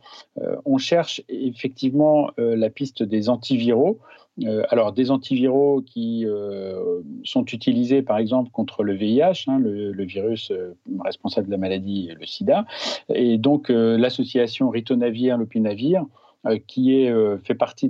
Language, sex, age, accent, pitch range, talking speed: French, male, 40-59, French, 110-135 Hz, 135 wpm